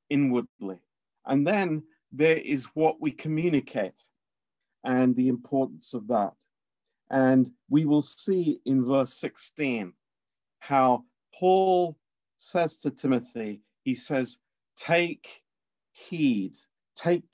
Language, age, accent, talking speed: Romanian, 50-69, British, 105 wpm